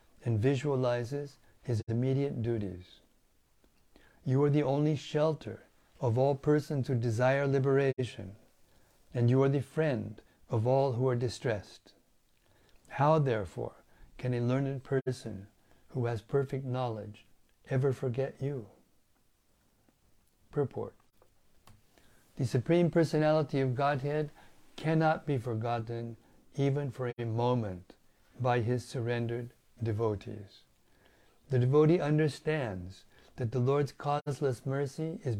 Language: English